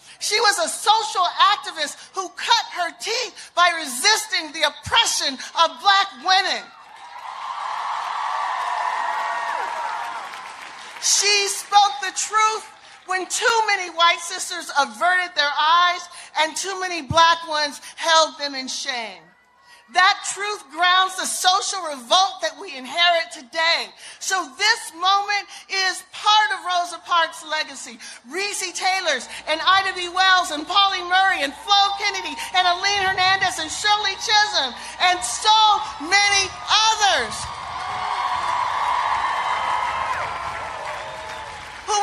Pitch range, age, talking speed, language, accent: 345-415 Hz, 40-59, 115 wpm, English, American